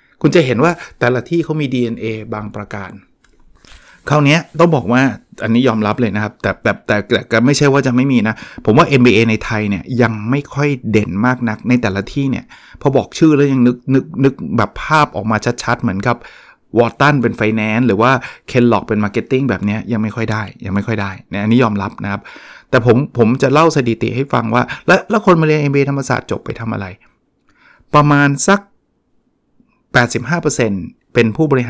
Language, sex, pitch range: Thai, male, 110-130 Hz